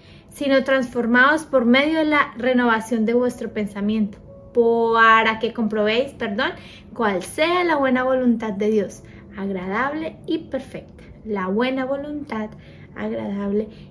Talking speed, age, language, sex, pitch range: 120 wpm, 20-39, Spanish, female, 215-270 Hz